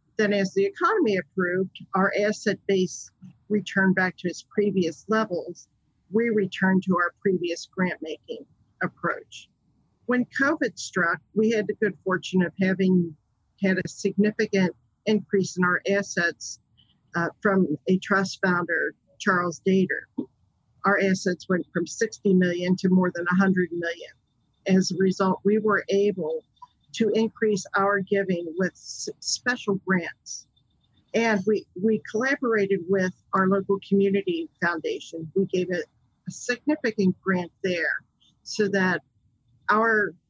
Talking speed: 135 wpm